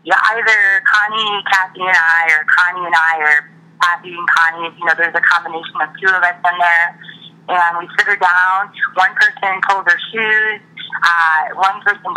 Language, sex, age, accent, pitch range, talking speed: English, female, 30-49, American, 170-205 Hz, 185 wpm